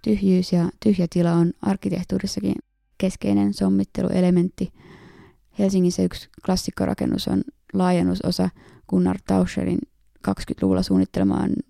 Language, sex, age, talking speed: Finnish, female, 20-39, 85 wpm